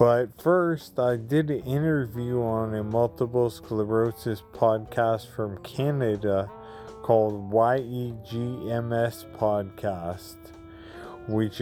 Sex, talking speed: male, 90 wpm